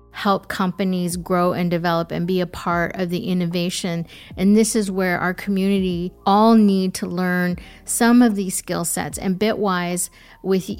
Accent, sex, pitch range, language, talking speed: American, female, 180-215 Hz, English, 165 wpm